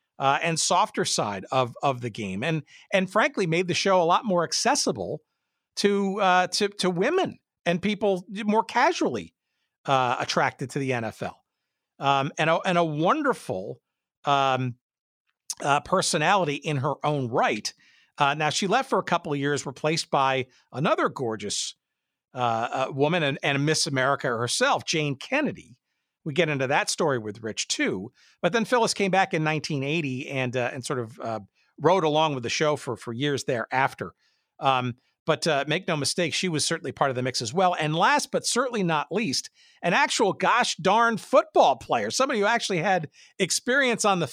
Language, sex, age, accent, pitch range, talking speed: English, male, 50-69, American, 135-190 Hz, 180 wpm